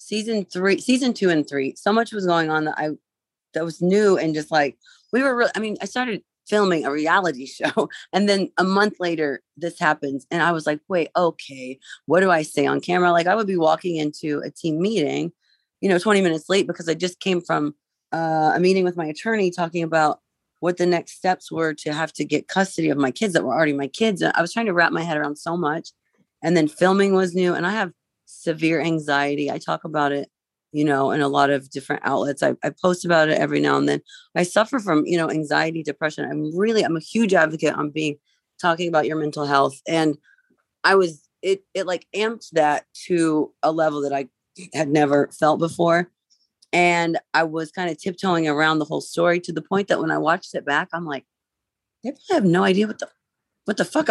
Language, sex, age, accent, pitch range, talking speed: English, female, 30-49, American, 150-190 Hz, 225 wpm